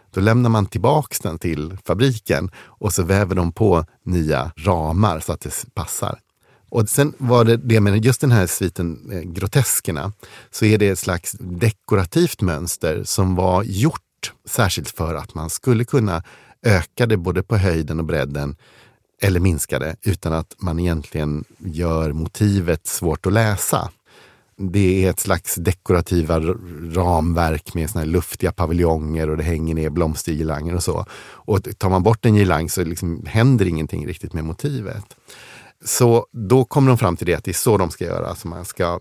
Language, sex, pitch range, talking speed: Swedish, male, 85-110 Hz, 170 wpm